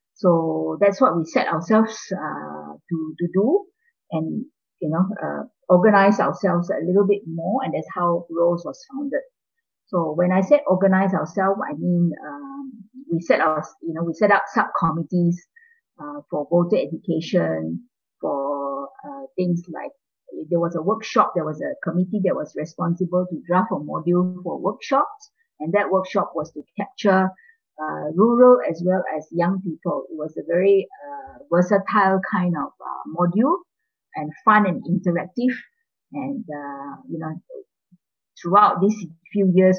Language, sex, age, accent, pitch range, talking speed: English, female, 50-69, Malaysian, 170-240 Hz, 155 wpm